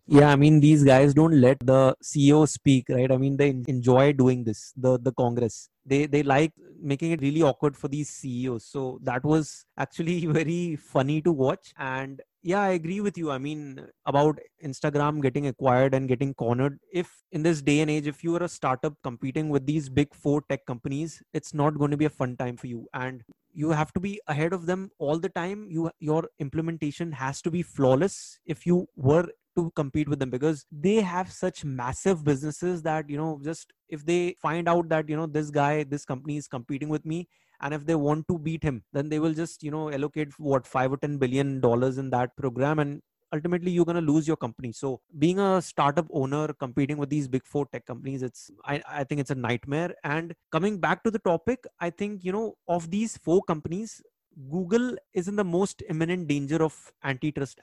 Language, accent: English, Indian